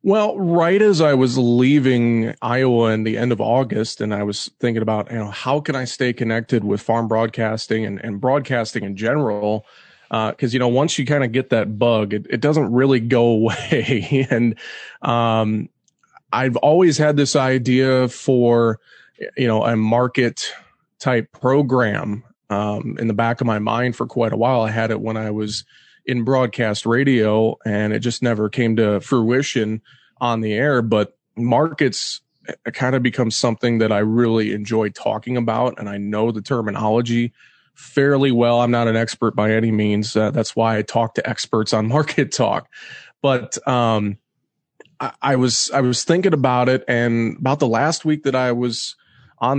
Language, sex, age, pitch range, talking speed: English, male, 30-49, 110-130 Hz, 180 wpm